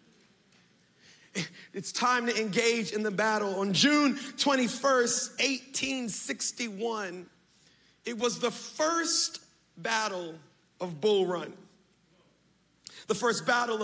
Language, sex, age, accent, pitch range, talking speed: English, male, 40-59, American, 205-265 Hz, 95 wpm